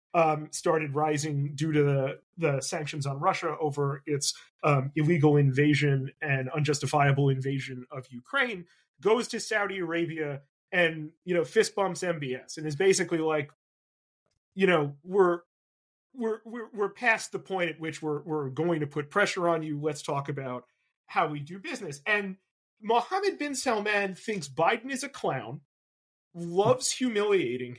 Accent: American